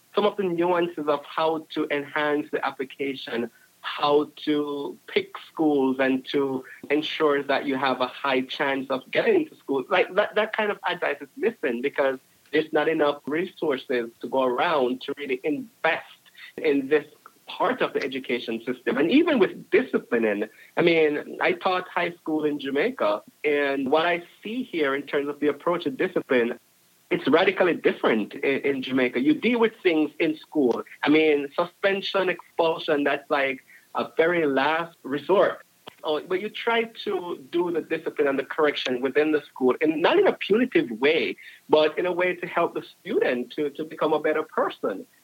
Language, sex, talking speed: English, male, 175 wpm